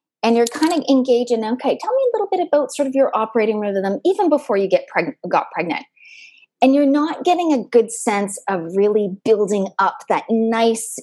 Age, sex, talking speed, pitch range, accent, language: 20-39, female, 205 wpm, 195-290 Hz, American, English